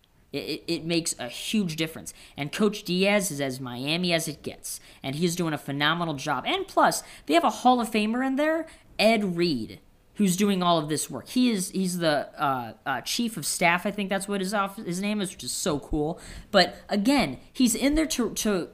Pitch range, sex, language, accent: 150-205 Hz, female, English, American